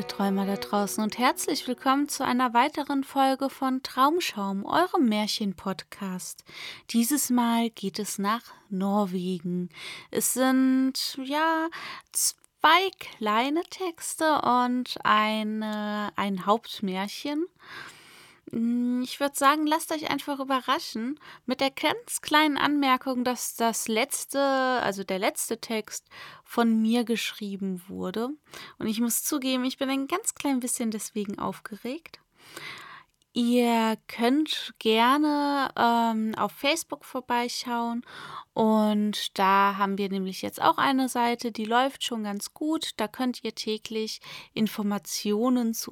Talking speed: 120 wpm